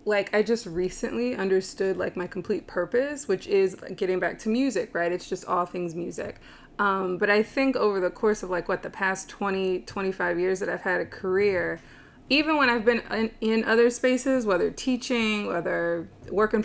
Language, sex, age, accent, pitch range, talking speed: English, female, 20-39, American, 185-220 Hz, 190 wpm